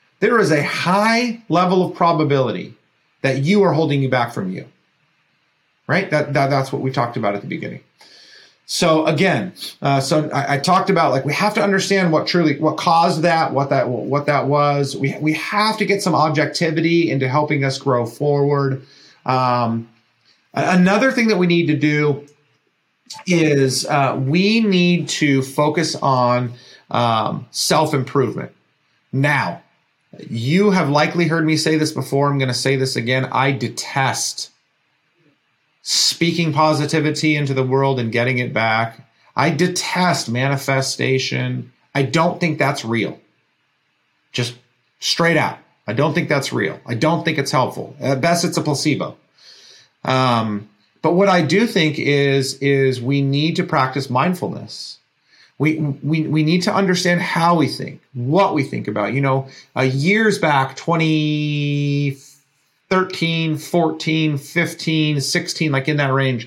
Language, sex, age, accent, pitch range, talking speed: English, male, 40-59, American, 135-165 Hz, 155 wpm